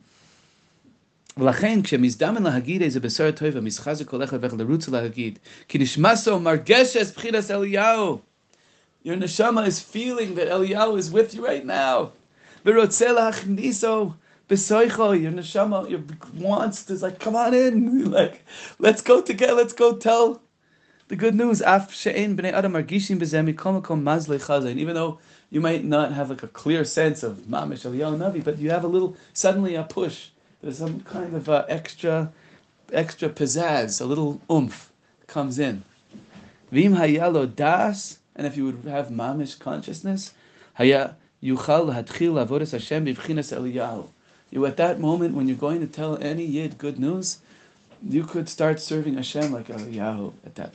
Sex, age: male, 30-49